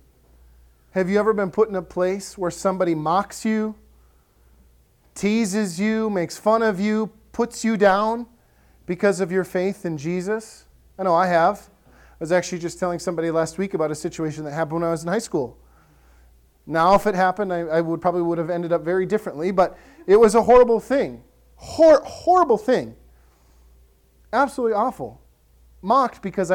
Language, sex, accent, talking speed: English, male, American, 170 wpm